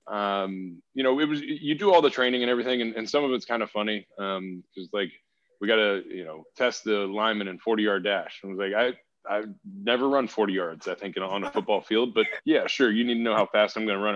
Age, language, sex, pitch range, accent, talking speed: 20-39, English, male, 105-130 Hz, American, 270 wpm